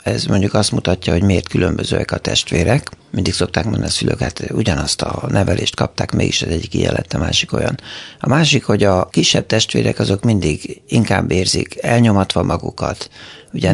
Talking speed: 175 wpm